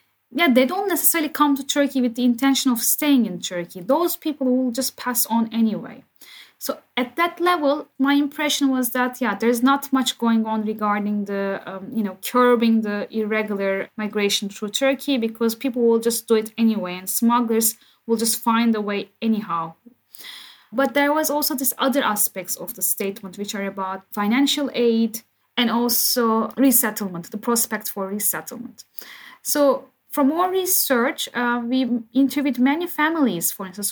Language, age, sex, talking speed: English, 10-29, female, 165 wpm